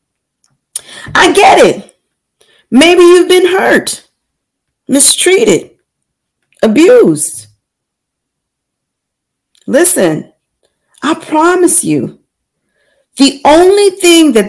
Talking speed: 70 wpm